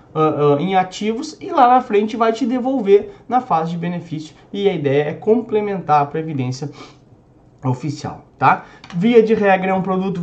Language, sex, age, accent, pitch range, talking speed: Portuguese, male, 20-39, Brazilian, 150-200 Hz, 165 wpm